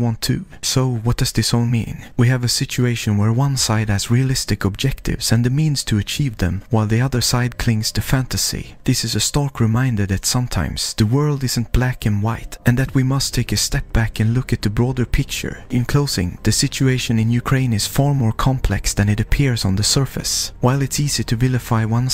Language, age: English, 30-49